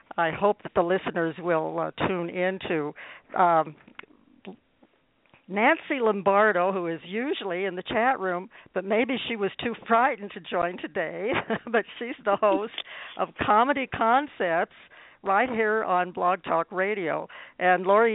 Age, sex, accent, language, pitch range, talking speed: 60-79, female, American, English, 165-210 Hz, 140 wpm